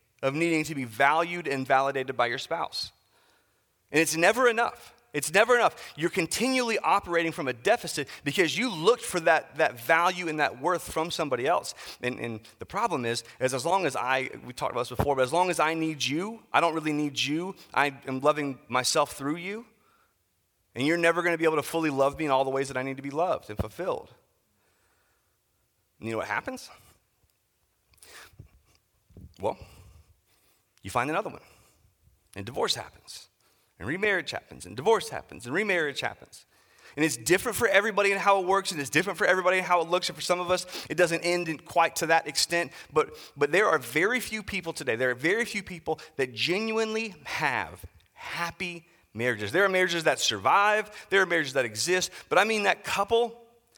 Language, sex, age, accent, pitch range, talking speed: English, male, 30-49, American, 140-180 Hz, 200 wpm